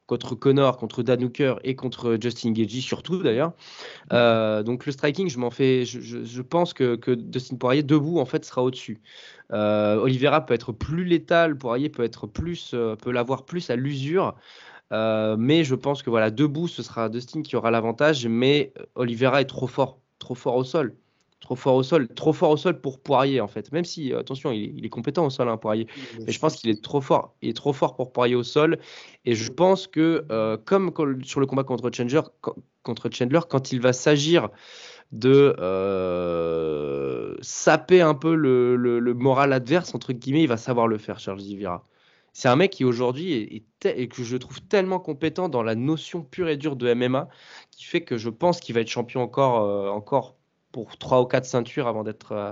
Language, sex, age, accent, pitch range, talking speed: French, male, 20-39, French, 115-150 Hz, 210 wpm